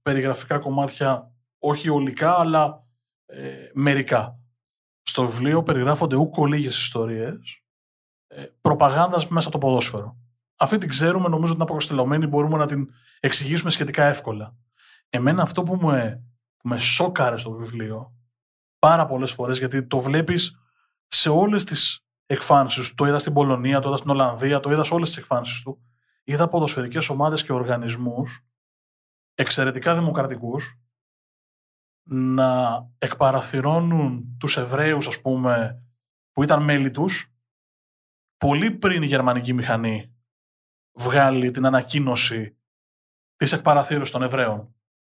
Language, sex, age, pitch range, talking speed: Greek, male, 20-39, 120-150 Hz, 125 wpm